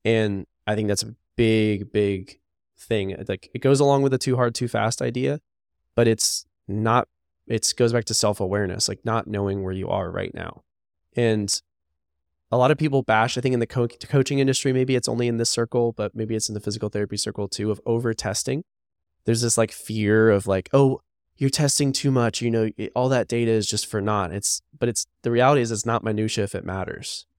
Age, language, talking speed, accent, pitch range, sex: 20-39, English, 215 wpm, American, 95-120 Hz, male